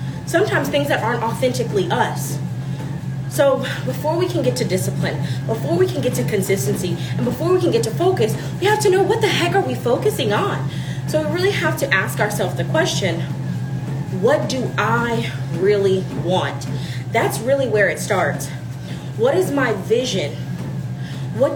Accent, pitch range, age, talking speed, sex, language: American, 130-185 Hz, 20-39, 170 wpm, female, English